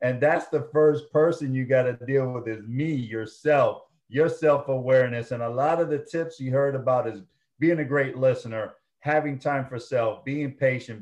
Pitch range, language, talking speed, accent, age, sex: 115-140 Hz, English, 185 wpm, American, 40-59, male